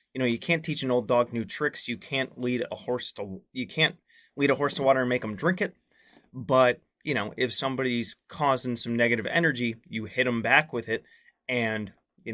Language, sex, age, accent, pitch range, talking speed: English, male, 30-49, American, 110-130 Hz, 220 wpm